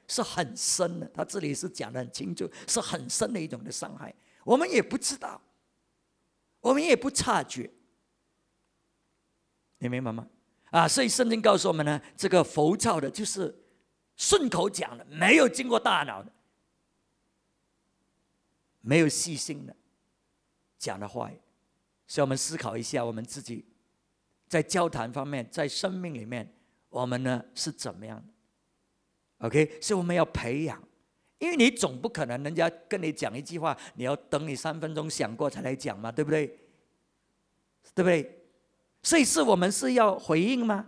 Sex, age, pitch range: male, 50-69, 150-230 Hz